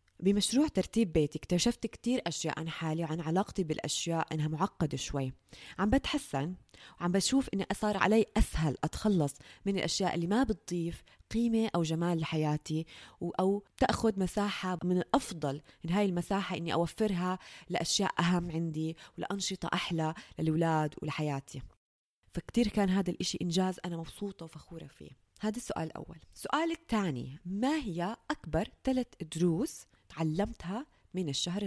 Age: 20-39